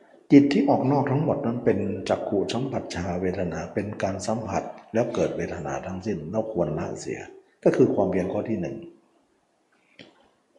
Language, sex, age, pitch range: Thai, male, 60-79, 100-140 Hz